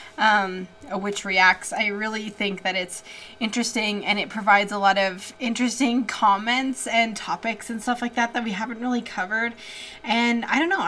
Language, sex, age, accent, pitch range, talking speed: English, female, 20-39, American, 210-255 Hz, 175 wpm